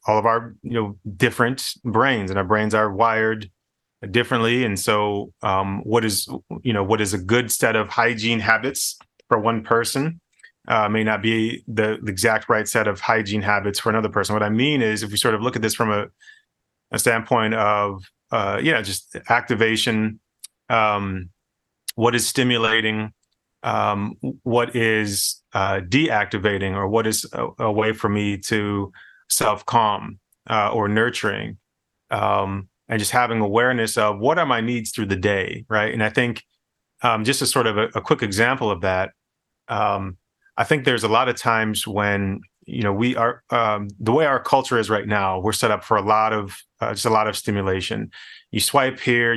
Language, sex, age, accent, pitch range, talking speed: English, male, 30-49, American, 105-115 Hz, 185 wpm